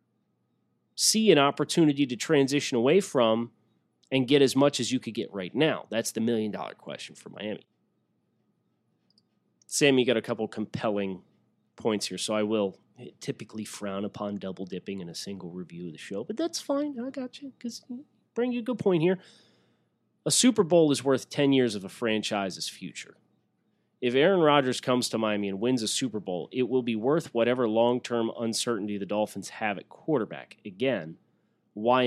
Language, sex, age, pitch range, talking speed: English, male, 30-49, 105-140 Hz, 175 wpm